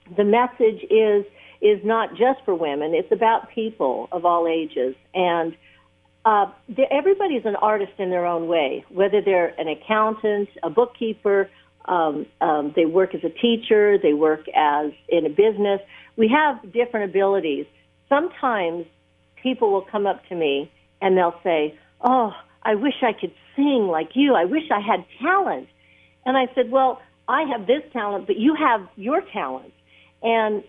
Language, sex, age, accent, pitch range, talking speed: English, female, 60-79, American, 180-255 Hz, 160 wpm